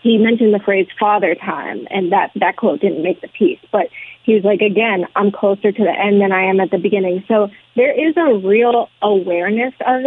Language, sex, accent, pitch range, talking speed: English, female, American, 185-220 Hz, 220 wpm